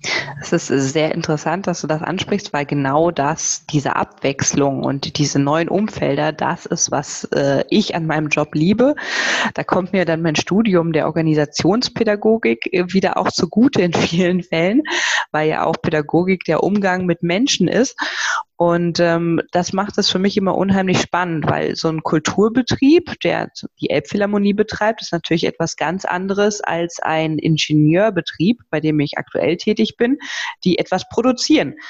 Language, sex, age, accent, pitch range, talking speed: German, female, 20-39, German, 165-205 Hz, 155 wpm